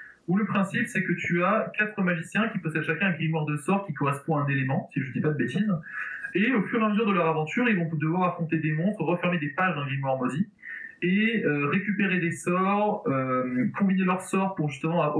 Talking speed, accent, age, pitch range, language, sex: 240 wpm, French, 20-39, 155-195 Hz, French, male